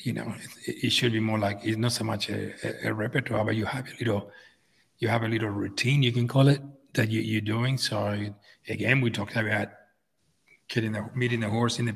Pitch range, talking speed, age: 105-120 Hz, 235 wpm, 40-59